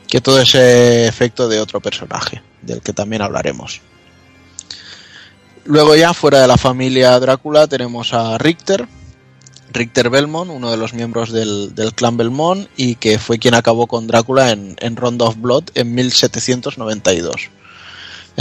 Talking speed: 145 wpm